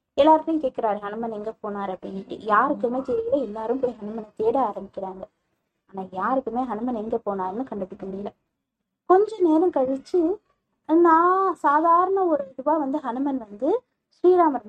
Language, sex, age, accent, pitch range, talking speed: Tamil, female, 20-39, native, 215-310 Hz, 125 wpm